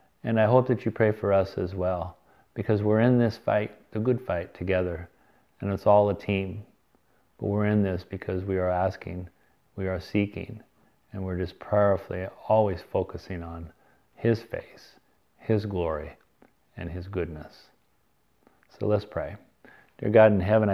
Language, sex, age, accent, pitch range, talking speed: English, male, 40-59, American, 95-105 Hz, 160 wpm